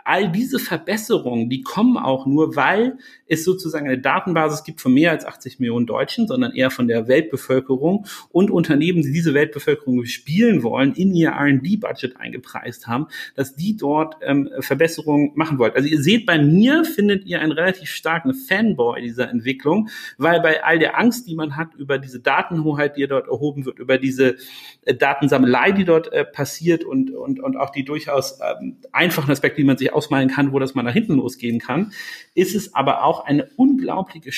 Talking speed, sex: 185 wpm, male